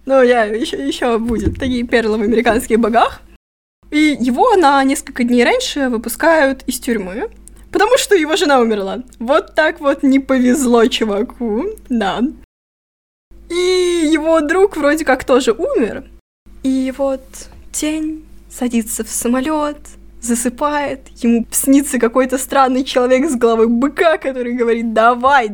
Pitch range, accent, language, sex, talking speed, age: 240-305 Hz, native, Russian, female, 130 wpm, 20-39